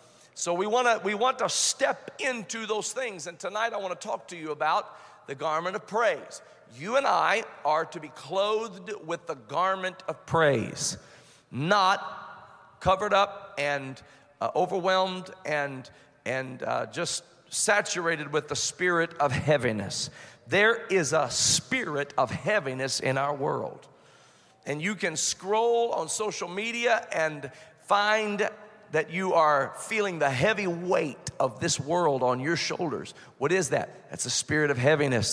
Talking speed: 155 wpm